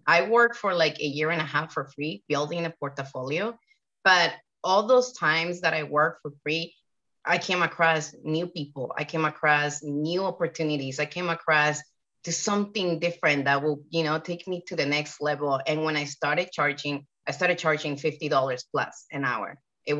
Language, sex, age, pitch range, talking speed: English, female, 30-49, 150-245 Hz, 185 wpm